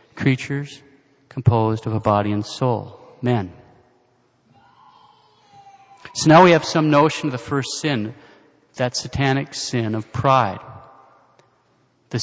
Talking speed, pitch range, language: 120 wpm, 115-145 Hz, English